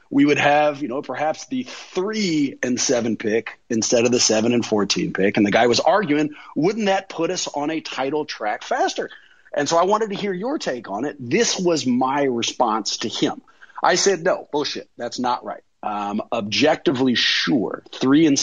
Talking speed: 195 wpm